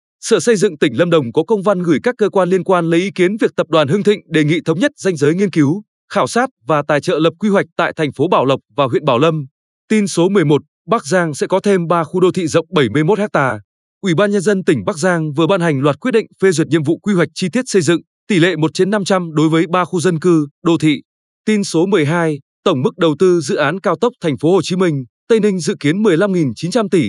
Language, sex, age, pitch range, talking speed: Vietnamese, male, 20-39, 155-200 Hz, 265 wpm